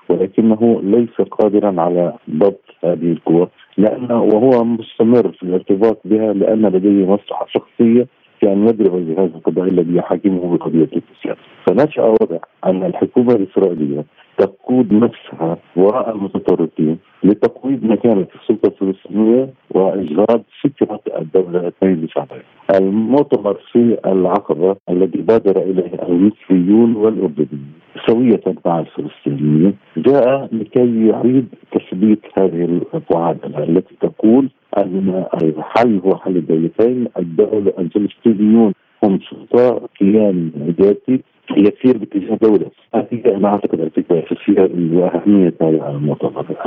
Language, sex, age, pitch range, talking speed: Arabic, male, 50-69, 90-110 Hz, 110 wpm